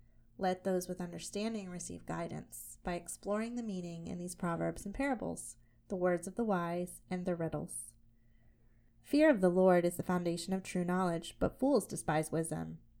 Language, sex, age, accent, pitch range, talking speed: English, female, 30-49, American, 160-205 Hz, 170 wpm